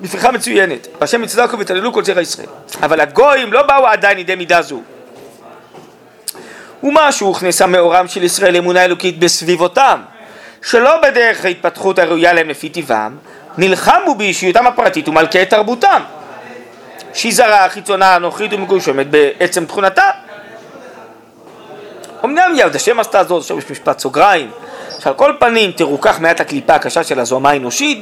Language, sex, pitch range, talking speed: Hebrew, male, 165-240 Hz, 135 wpm